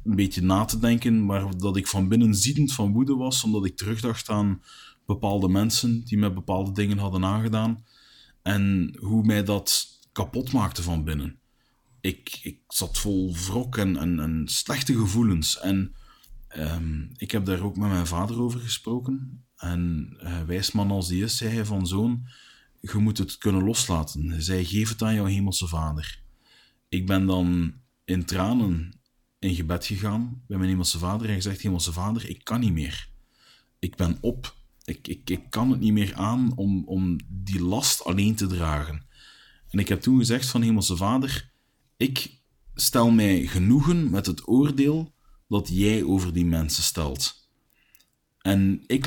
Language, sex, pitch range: Dutch, male, 90-120 Hz